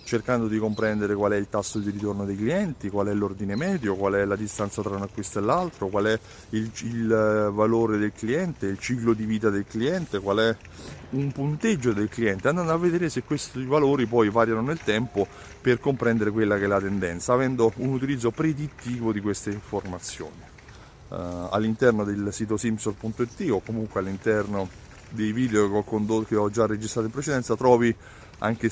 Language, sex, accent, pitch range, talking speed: Italian, male, native, 100-135 Hz, 180 wpm